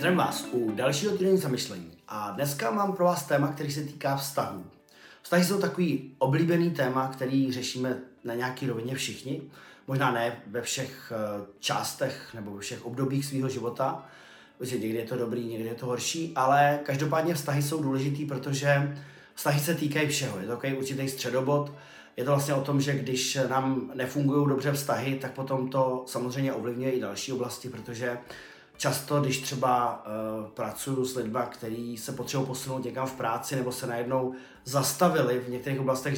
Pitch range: 125-145 Hz